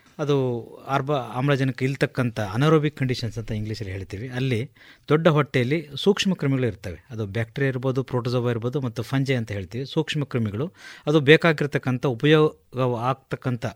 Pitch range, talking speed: 120-150 Hz, 130 wpm